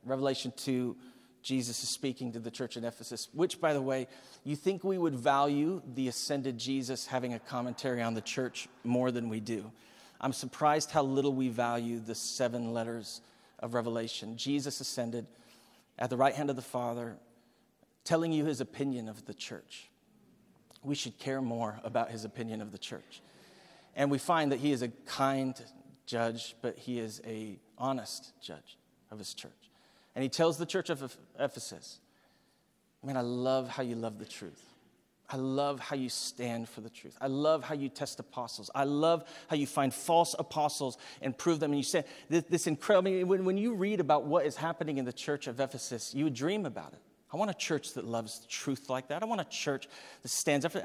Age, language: 40-59, English